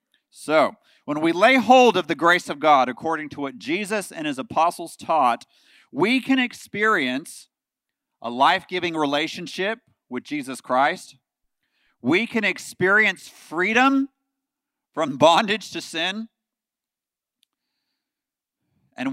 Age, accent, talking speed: 40-59, American, 115 wpm